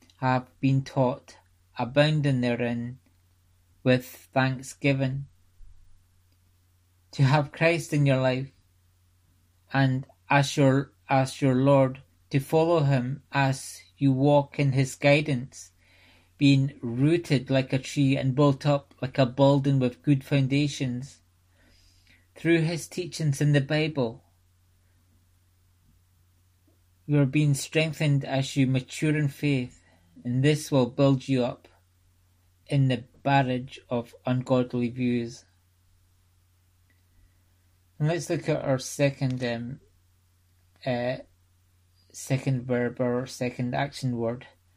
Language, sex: English, male